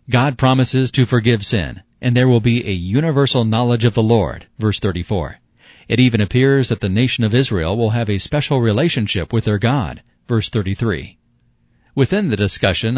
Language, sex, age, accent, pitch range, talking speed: English, male, 40-59, American, 105-130 Hz, 175 wpm